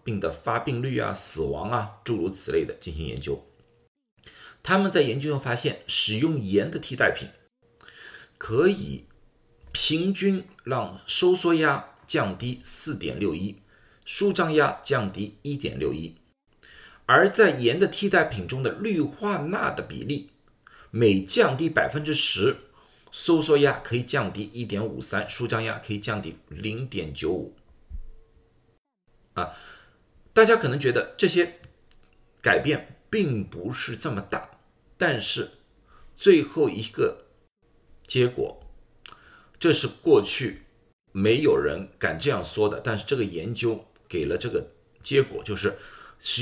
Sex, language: male, Chinese